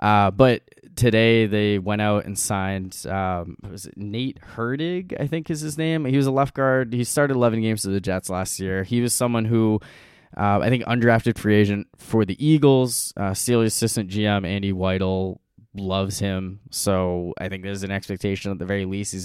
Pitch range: 95-115 Hz